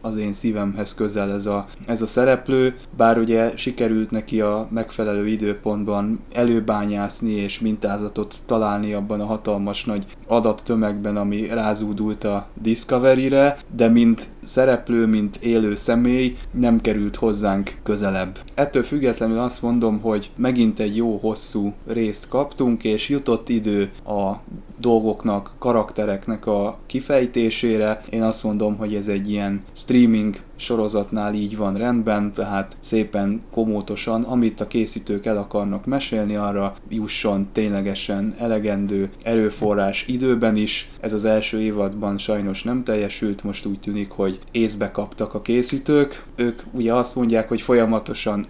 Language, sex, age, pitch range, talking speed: Hungarian, male, 20-39, 105-115 Hz, 130 wpm